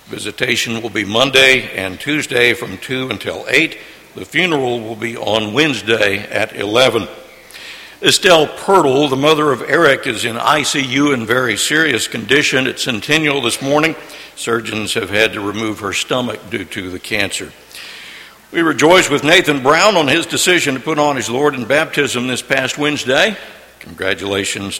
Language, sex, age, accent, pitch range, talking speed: English, male, 60-79, American, 110-150 Hz, 155 wpm